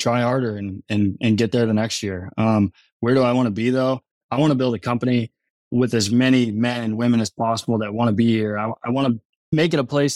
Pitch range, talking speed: 105-120 Hz, 265 wpm